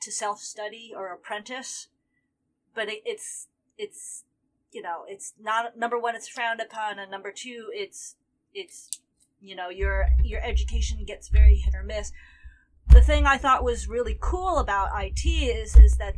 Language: English